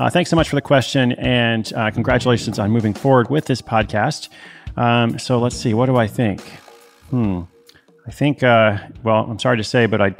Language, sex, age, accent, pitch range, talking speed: English, male, 30-49, American, 100-120 Hz, 205 wpm